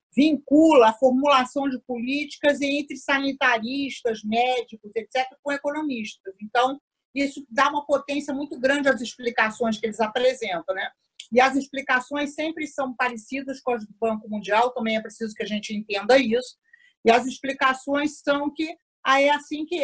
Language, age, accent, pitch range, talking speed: Portuguese, 50-69, Brazilian, 220-280 Hz, 155 wpm